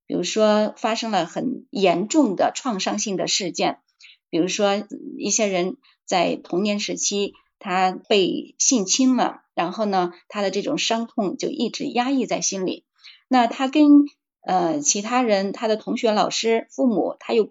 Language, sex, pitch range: Chinese, female, 195-275 Hz